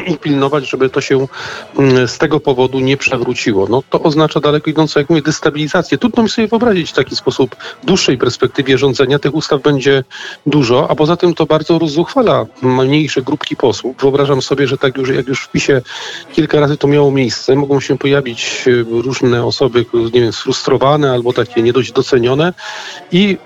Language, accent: Polish, native